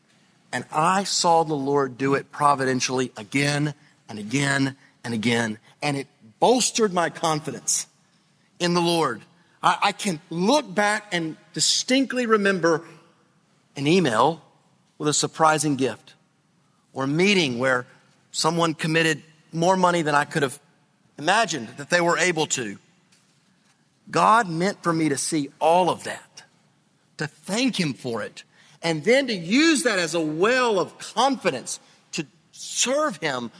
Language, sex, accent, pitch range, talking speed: English, male, American, 155-200 Hz, 140 wpm